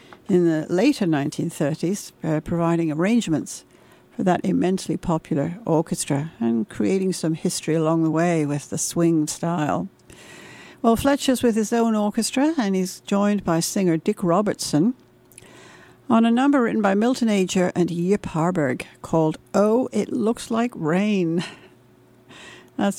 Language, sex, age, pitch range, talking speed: English, female, 60-79, 165-215 Hz, 140 wpm